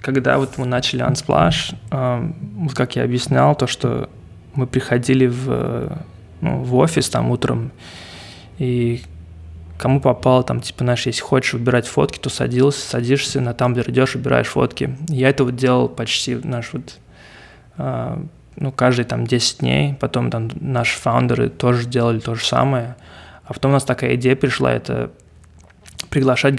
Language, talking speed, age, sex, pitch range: Russian, 150 wpm, 20-39, male, 100-130 Hz